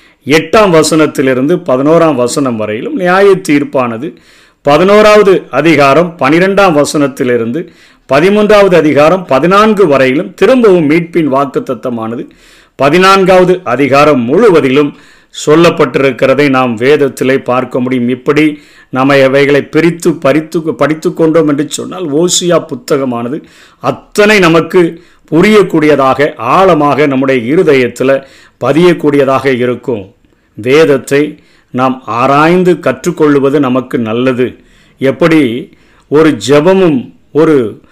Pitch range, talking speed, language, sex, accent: 135-175 Hz, 85 wpm, Tamil, male, native